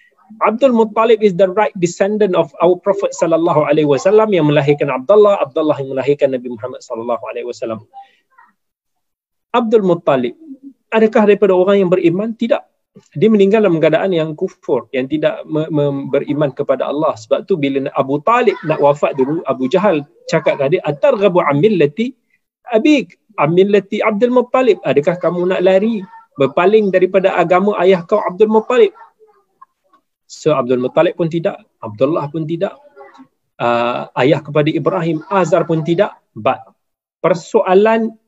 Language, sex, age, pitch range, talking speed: Malay, male, 30-49, 150-225 Hz, 145 wpm